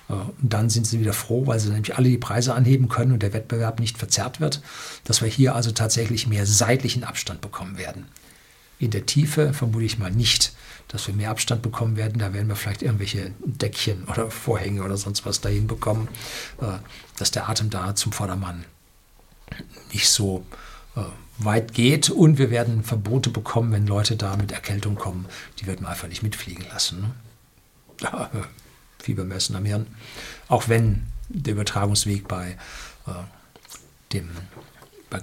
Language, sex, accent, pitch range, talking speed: German, male, German, 100-115 Hz, 160 wpm